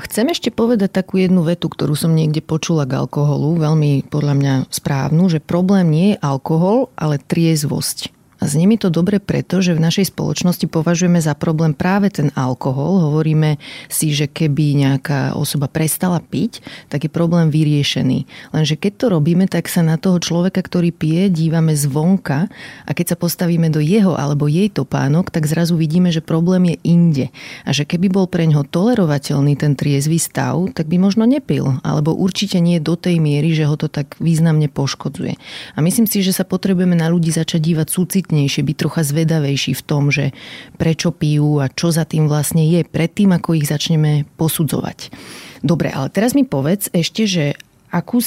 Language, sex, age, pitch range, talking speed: Slovak, female, 30-49, 145-180 Hz, 180 wpm